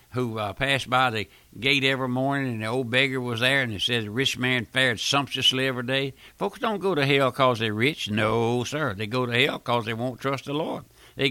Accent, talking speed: American, 240 wpm